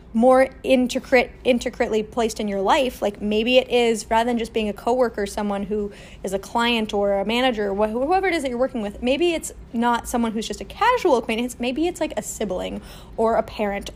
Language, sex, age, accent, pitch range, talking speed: English, female, 20-39, American, 220-265 Hz, 215 wpm